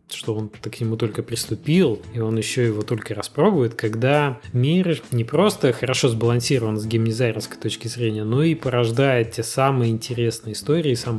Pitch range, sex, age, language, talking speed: 115-135 Hz, male, 20-39, Russian, 160 wpm